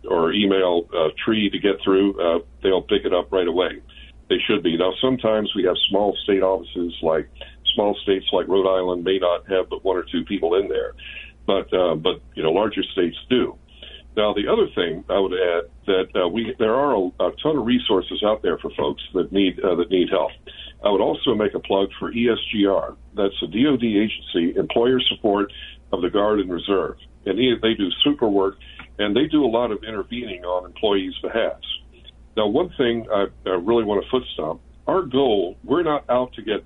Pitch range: 95-120 Hz